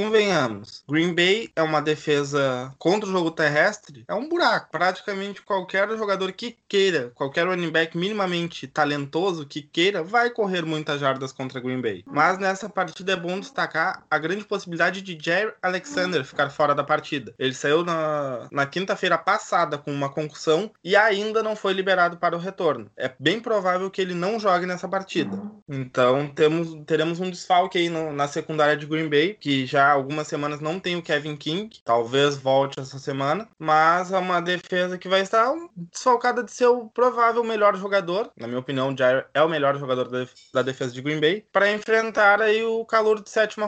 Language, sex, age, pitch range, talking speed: Portuguese, male, 20-39, 150-200 Hz, 180 wpm